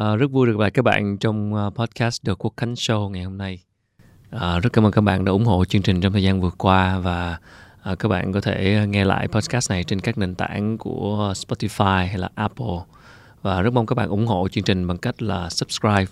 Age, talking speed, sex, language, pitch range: 20-39, 225 wpm, male, Vietnamese, 95-115 Hz